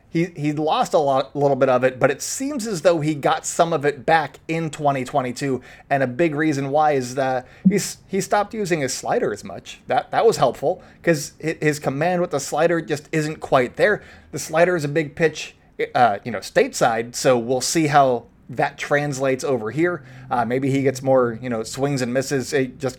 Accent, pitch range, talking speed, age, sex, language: American, 130-165 Hz, 205 wpm, 20-39, male, English